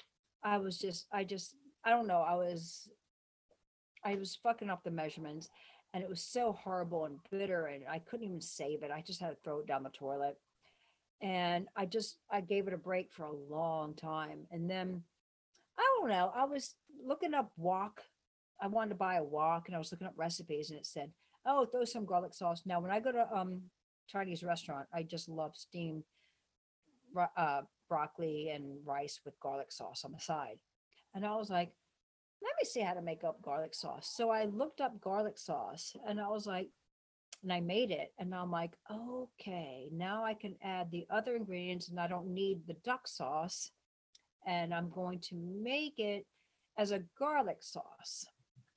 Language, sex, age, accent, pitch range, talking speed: English, female, 50-69, American, 170-220 Hz, 195 wpm